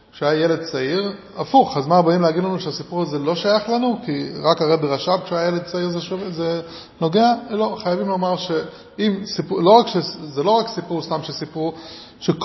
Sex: male